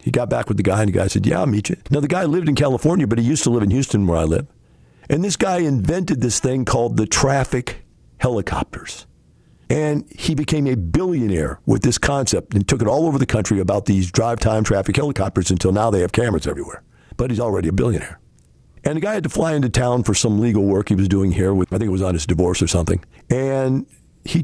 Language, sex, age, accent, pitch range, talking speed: English, male, 50-69, American, 95-125 Hz, 245 wpm